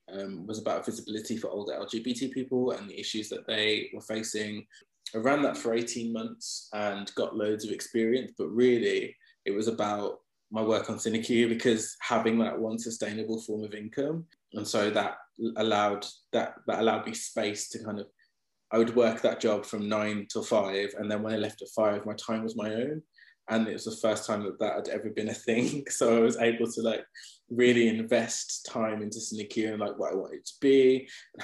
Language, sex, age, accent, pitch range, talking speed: English, male, 20-39, British, 105-120 Hz, 210 wpm